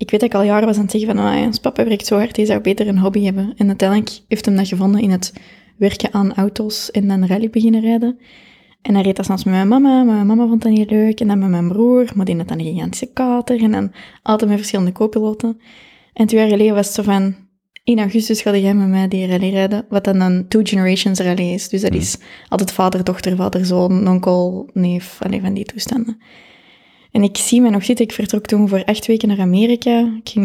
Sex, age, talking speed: female, 20-39, 245 wpm